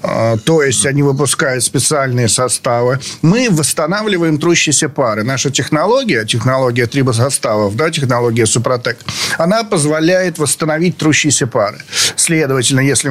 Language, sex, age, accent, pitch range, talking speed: Russian, male, 50-69, native, 115-150 Hz, 110 wpm